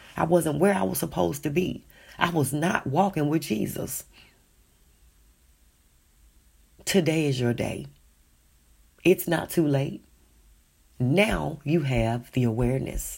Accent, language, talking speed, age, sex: American, English, 125 wpm, 40-59, female